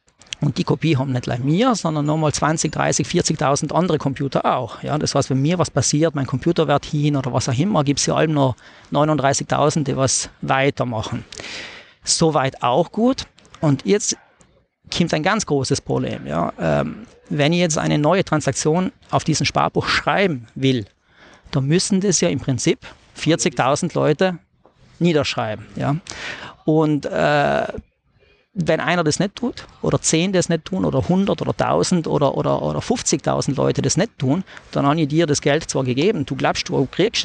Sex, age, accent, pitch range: male, 40-59, German, 135-175 Hz